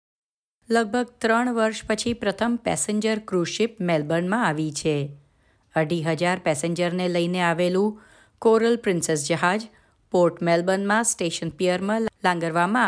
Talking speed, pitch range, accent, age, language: 105 wpm, 170-215 Hz, native, 30-49, Gujarati